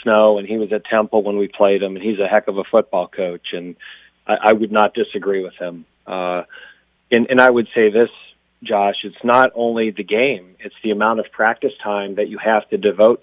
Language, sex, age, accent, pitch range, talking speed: English, male, 40-59, American, 100-110 Hz, 225 wpm